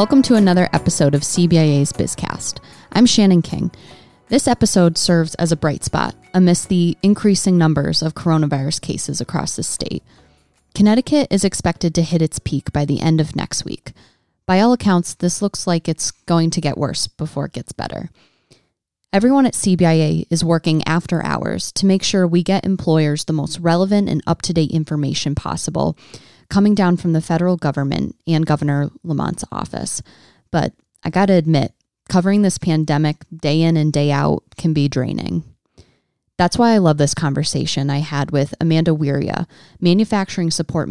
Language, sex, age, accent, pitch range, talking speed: English, female, 20-39, American, 150-185 Hz, 165 wpm